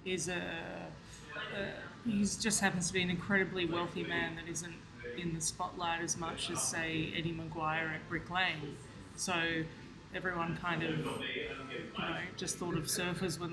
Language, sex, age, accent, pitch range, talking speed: English, female, 20-39, Australian, 165-190 Hz, 165 wpm